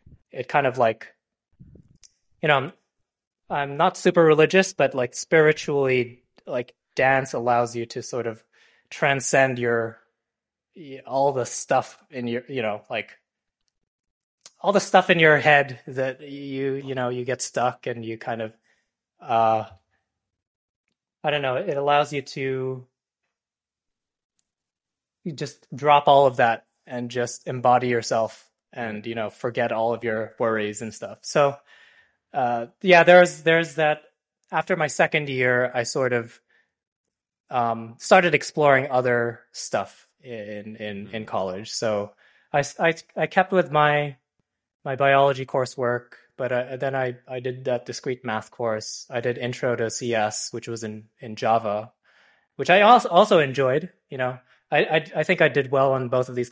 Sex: male